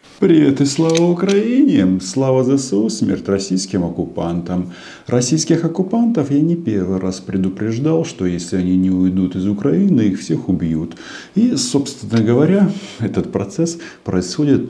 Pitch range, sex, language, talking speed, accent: 90-140 Hz, male, Russian, 130 wpm, native